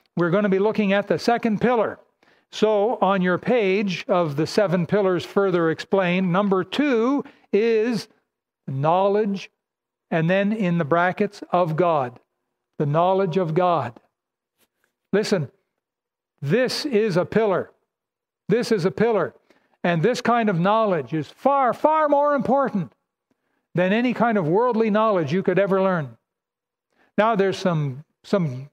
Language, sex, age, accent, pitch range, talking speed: English, male, 60-79, American, 175-220 Hz, 140 wpm